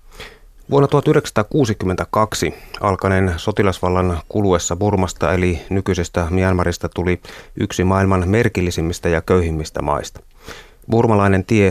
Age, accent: 30-49, native